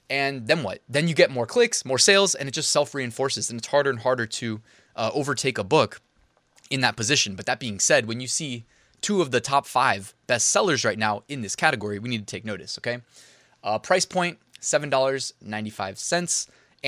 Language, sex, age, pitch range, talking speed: English, male, 20-39, 110-145 Hz, 195 wpm